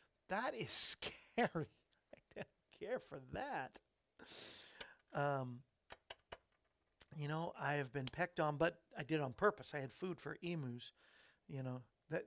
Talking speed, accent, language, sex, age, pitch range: 145 wpm, American, English, male, 40-59, 145-180 Hz